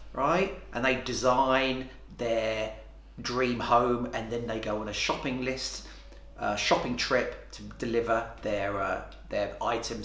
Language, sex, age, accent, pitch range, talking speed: English, male, 30-49, British, 100-120 Hz, 145 wpm